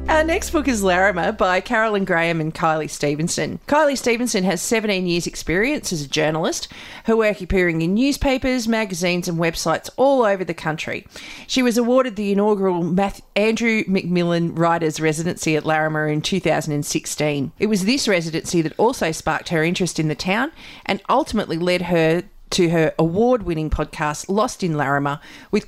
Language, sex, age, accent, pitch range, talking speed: English, female, 40-59, Australian, 165-215 Hz, 160 wpm